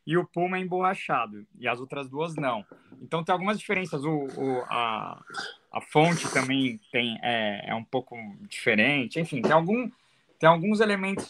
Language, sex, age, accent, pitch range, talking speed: Portuguese, male, 20-39, Brazilian, 120-155 Hz, 170 wpm